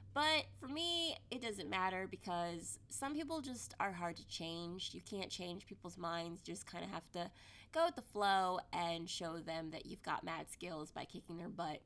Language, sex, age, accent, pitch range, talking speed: English, female, 20-39, American, 175-250 Hz, 210 wpm